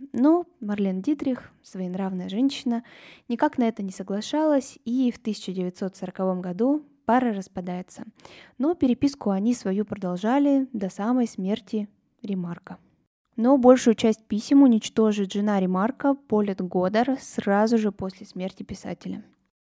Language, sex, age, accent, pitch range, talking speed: Russian, female, 20-39, native, 195-255 Hz, 120 wpm